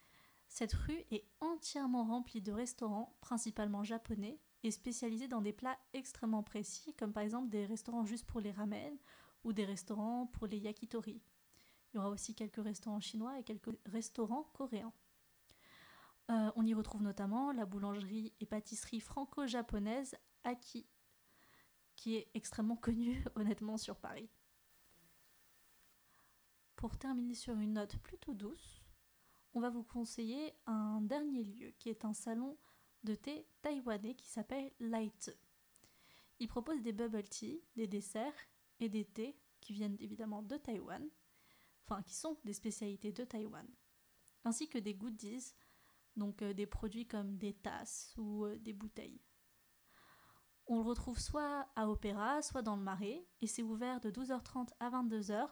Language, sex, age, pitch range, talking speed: French, female, 20-39, 215-250 Hz, 145 wpm